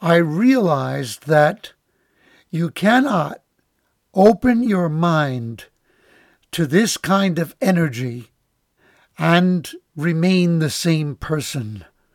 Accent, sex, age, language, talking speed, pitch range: American, male, 60-79, English, 90 wpm, 150-200 Hz